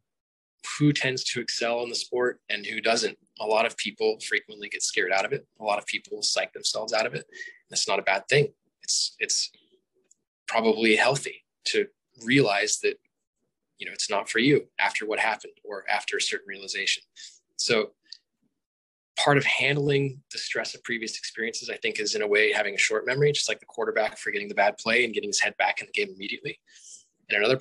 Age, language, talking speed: 20-39, English, 200 wpm